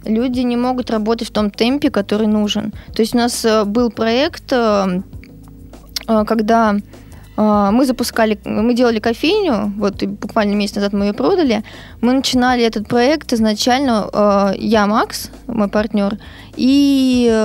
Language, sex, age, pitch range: Russian, female, 20-39, 215-250 Hz